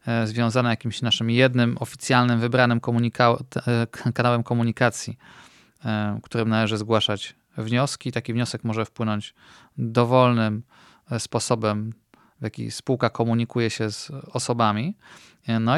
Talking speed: 115 wpm